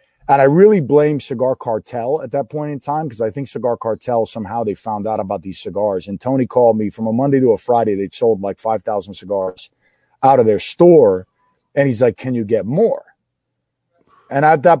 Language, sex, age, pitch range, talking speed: English, male, 40-59, 115-145 Hz, 210 wpm